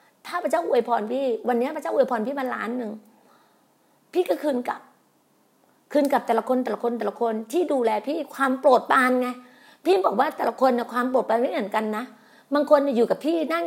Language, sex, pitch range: Thai, female, 235-300 Hz